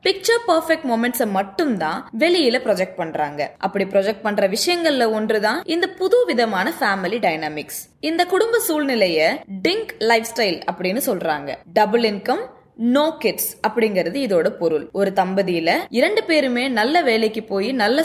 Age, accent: 20-39, native